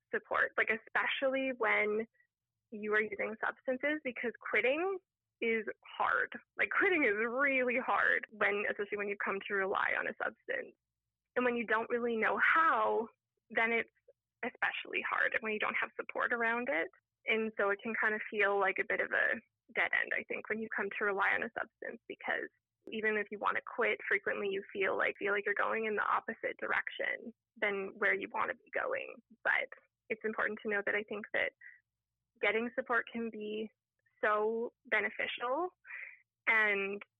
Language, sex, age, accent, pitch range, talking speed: English, female, 20-39, American, 210-245 Hz, 180 wpm